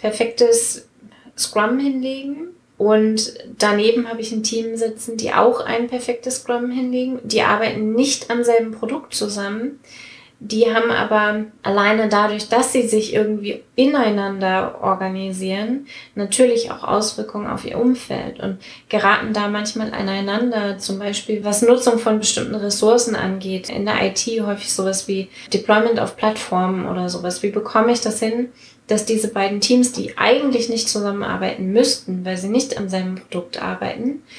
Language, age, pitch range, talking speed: German, 20-39, 205-240 Hz, 150 wpm